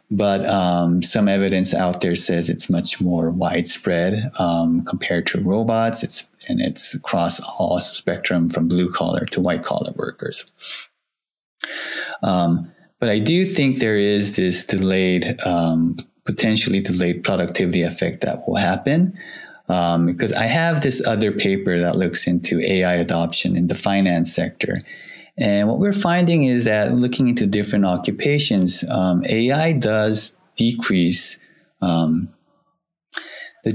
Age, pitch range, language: 20-39, 90-115 Hz, English